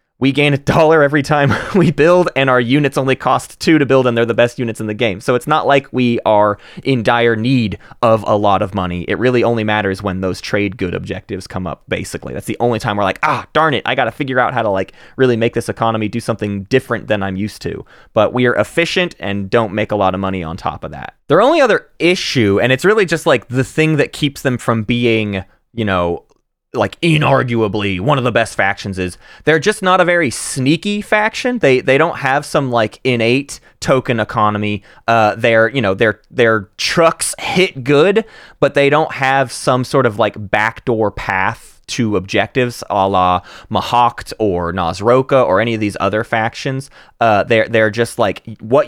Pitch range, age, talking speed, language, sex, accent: 105-140 Hz, 20-39, 210 wpm, English, male, American